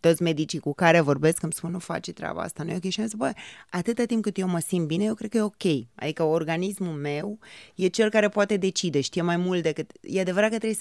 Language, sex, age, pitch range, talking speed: Romanian, female, 20-39, 170-220 Hz, 255 wpm